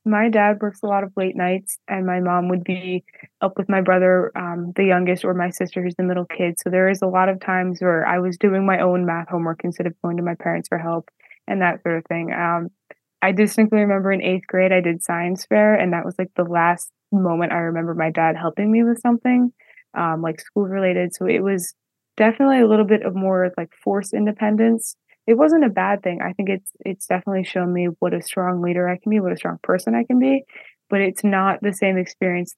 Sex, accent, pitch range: female, American, 175-195 Hz